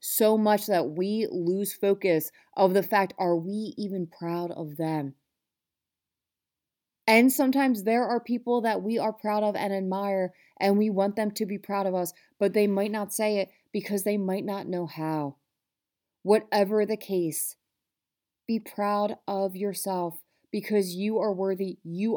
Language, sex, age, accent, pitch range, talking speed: English, female, 30-49, American, 175-205 Hz, 160 wpm